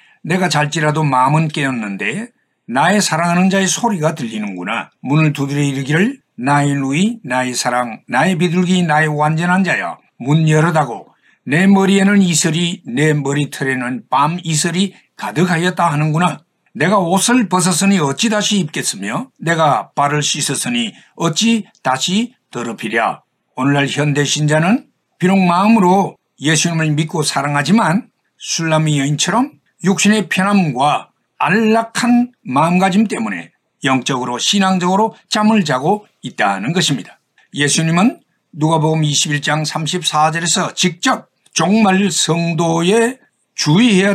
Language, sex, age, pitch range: Korean, male, 60-79, 150-205 Hz